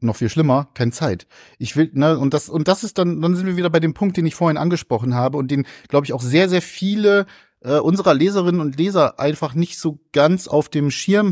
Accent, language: German, German